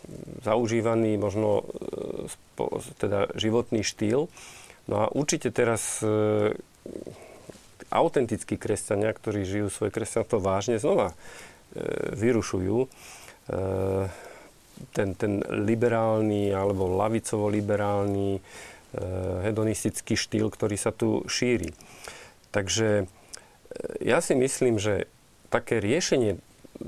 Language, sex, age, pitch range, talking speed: Slovak, male, 40-59, 105-115 Hz, 90 wpm